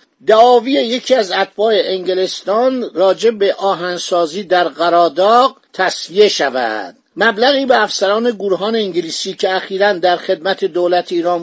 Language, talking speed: Persian, 120 wpm